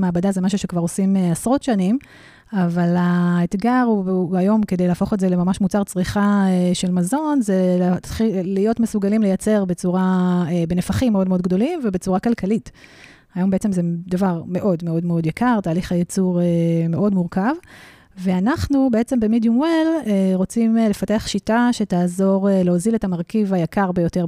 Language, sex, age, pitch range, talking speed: Hebrew, female, 30-49, 180-210 Hz, 165 wpm